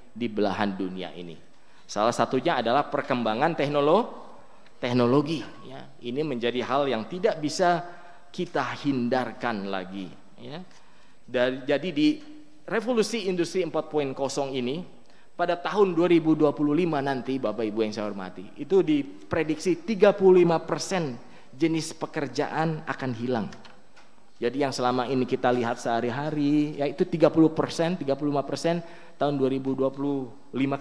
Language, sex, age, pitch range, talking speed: Indonesian, male, 20-39, 120-170 Hz, 105 wpm